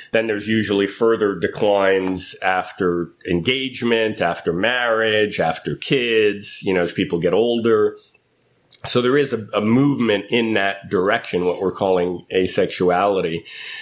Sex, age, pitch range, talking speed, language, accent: male, 40-59, 100-120 Hz, 130 wpm, English, American